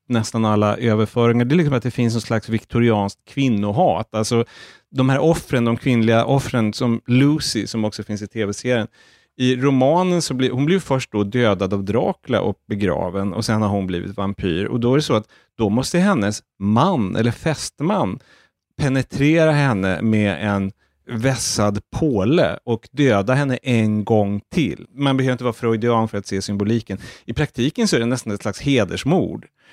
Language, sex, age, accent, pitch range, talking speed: English, male, 30-49, Norwegian, 105-130 Hz, 180 wpm